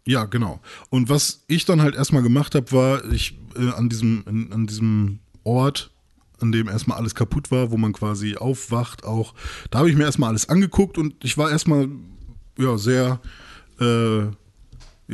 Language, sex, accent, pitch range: German, male, German, 115-140 Hz